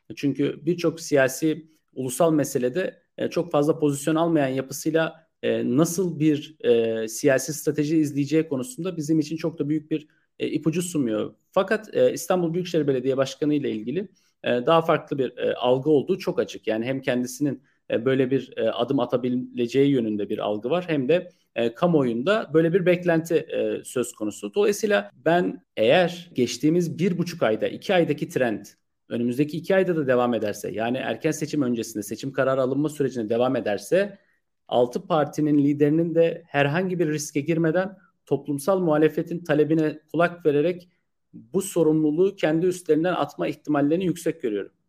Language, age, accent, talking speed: Turkish, 40-59, native, 140 wpm